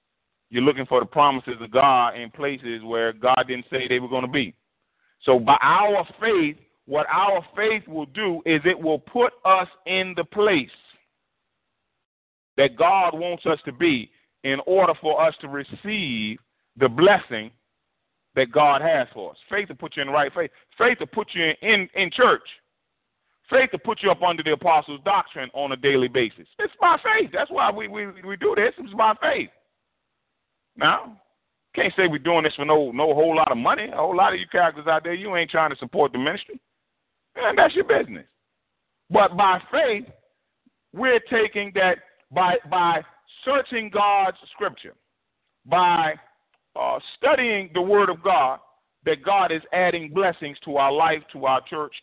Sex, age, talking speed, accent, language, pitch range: male, 40-59, 180 wpm, American, English, 140-205 Hz